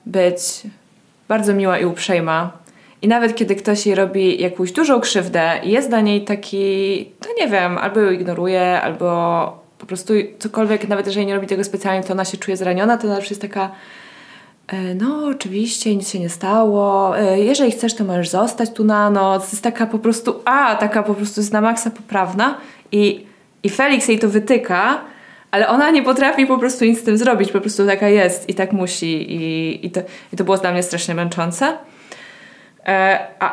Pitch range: 190-220 Hz